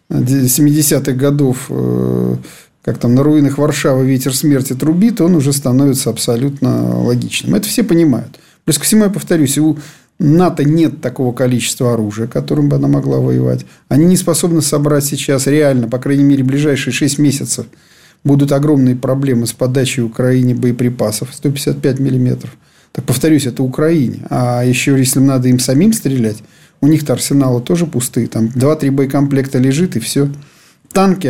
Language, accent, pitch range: Russian, native, 125-155 Hz